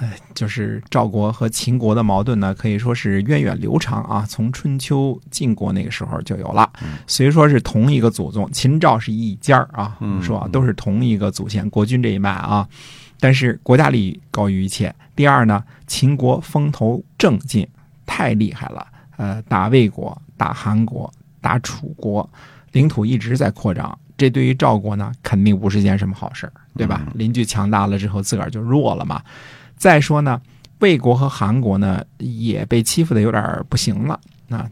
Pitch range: 105-135 Hz